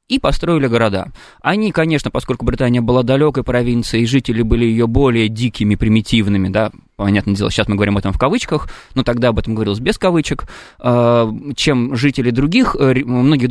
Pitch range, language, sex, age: 120-165 Hz, Russian, male, 20-39